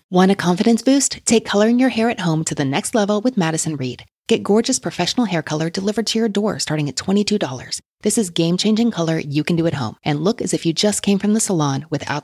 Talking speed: 240 wpm